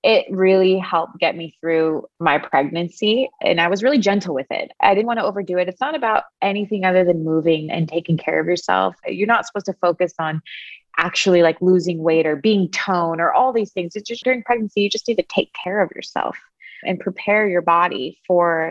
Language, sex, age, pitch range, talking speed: English, female, 20-39, 165-195 Hz, 215 wpm